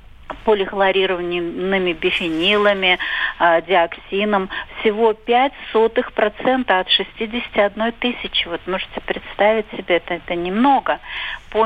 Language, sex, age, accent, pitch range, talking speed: Russian, female, 40-59, native, 185-220 Hz, 80 wpm